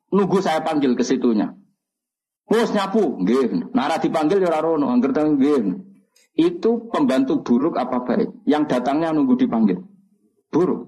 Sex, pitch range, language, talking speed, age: male, 155-240 Hz, Malay, 120 wpm, 50-69